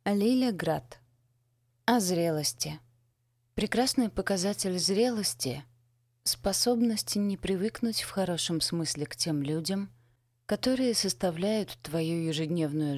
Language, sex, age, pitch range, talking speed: Russian, female, 30-49, 120-175 Hz, 90 wpm